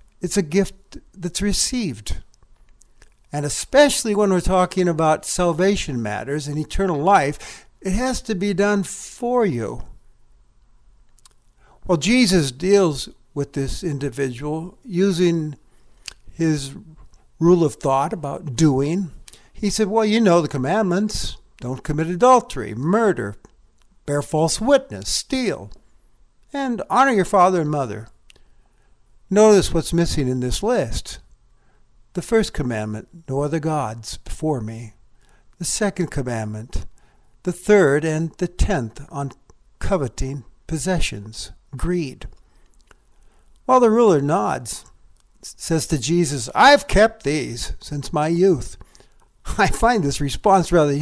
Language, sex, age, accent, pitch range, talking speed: English, male, 60-79, American, 140-200 Hz, 120 wpm